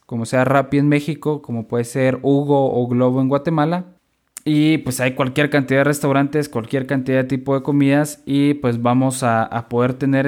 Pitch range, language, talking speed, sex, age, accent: 125-150 Hz, Spanish, 195 wpm, male, 20-39, Mexican